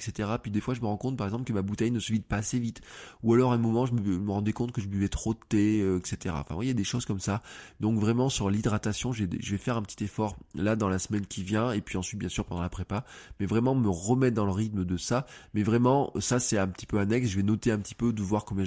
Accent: French